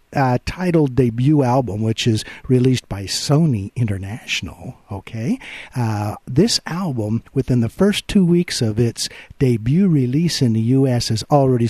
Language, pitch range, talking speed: English, 120-160 Hz, 145 wpm